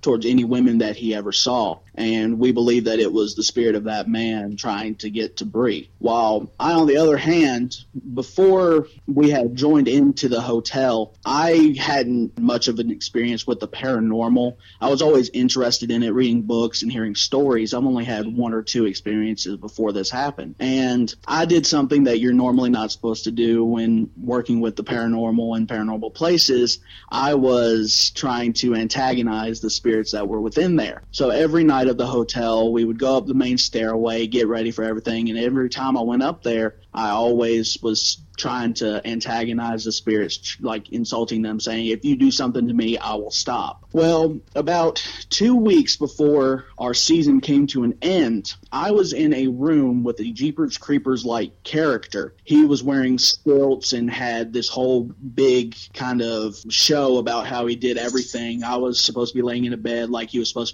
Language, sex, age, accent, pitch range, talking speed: English, male, 30-49, American, 115-135 Hz, 190 wpm